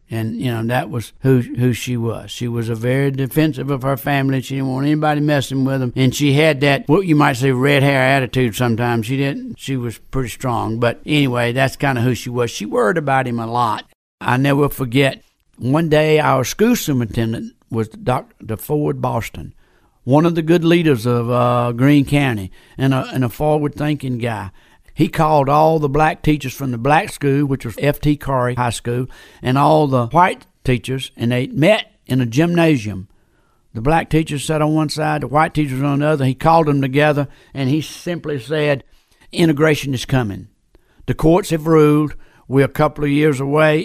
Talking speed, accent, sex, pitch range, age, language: 200 wpm, American, male, 125-150 Hz, 60-79, English